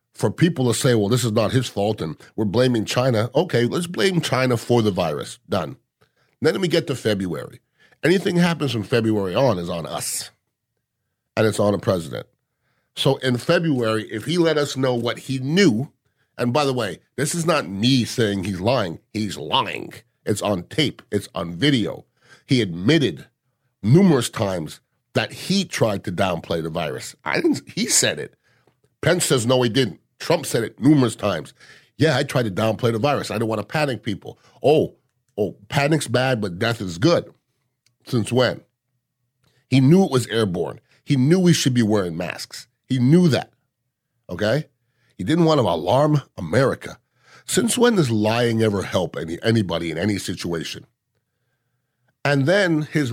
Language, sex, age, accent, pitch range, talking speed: English, male, 50-69, American, 110-145 Hz, 175 wpm